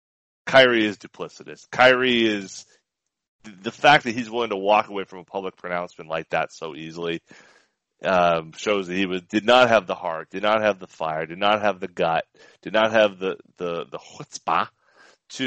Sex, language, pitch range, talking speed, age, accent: male, English, 90-115 Hz, 190 wpm, 30-49, American